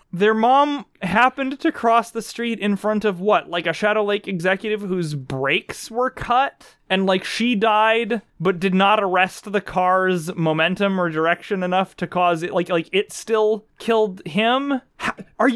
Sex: male